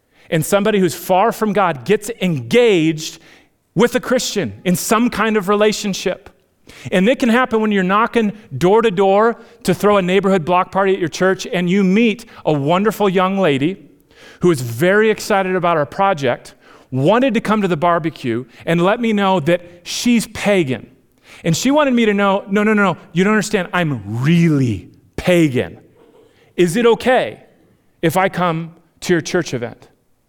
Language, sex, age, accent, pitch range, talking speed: English, male, 40-59, American, 145-215 Hz, 175 wpm